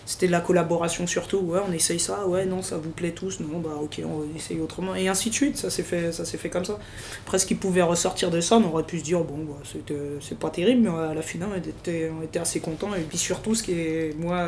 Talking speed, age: 285 wpm, 20-39